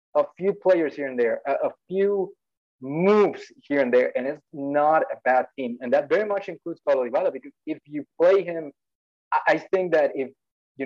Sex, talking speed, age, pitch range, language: male, 195 wpm, 20-39, 130-160 Hz, English